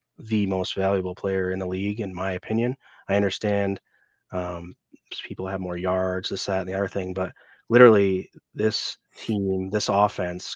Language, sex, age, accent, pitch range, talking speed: English, male, 30-49, American, 95-105 Hz, 165 wpm